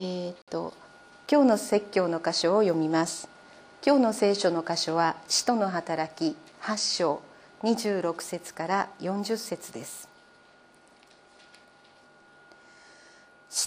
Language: Japanese